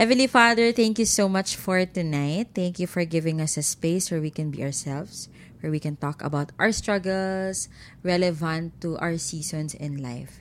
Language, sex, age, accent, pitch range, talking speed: Filipino, female, 20-39, native, 155-205 Hz, 190 wpm